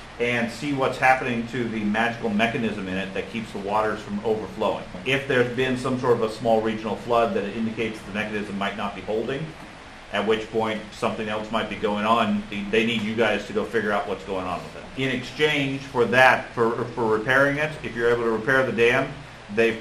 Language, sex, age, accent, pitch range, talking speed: English, male, 40-59, American, 110-130 Hz, 220 wpm